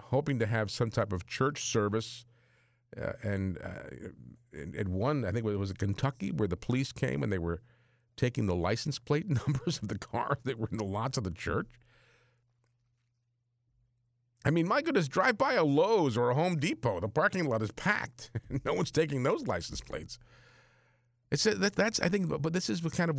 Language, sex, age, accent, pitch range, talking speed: English, male, 50-69, American, 115-135 Hz, 195 wpm